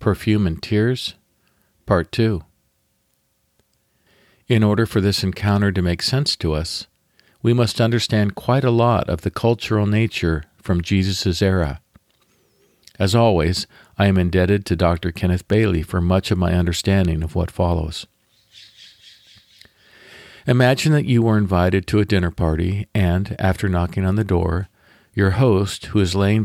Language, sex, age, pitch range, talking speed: English, male, 50-69, 90-110 Hz, 145 wpm